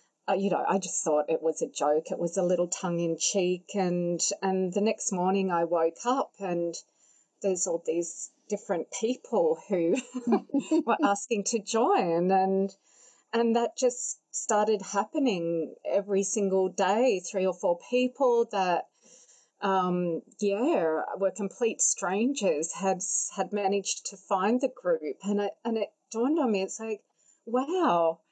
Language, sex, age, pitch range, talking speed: English, female, 30-49, 185-245 Hz, 155 wpm